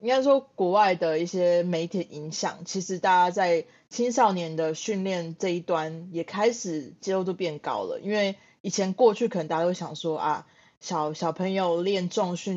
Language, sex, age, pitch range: Chinese, female, 20-39, 165-195 Hz